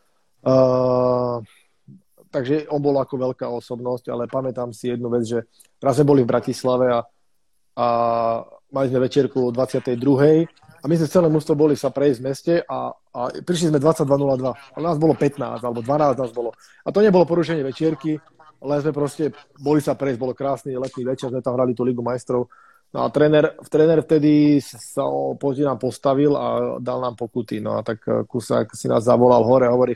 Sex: male